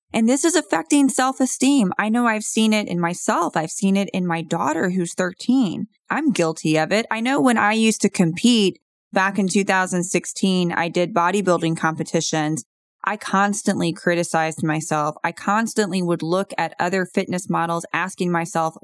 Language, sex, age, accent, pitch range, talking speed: English, female, 20-39, American, 170-215 Hz, 165 wpm